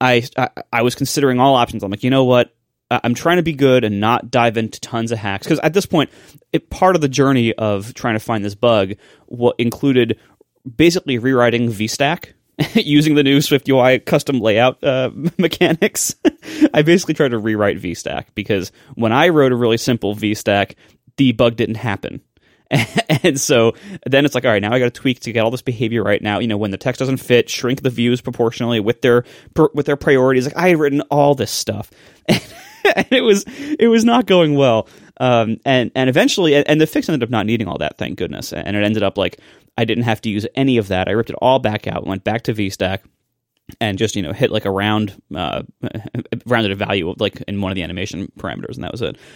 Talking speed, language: 220 wpm, English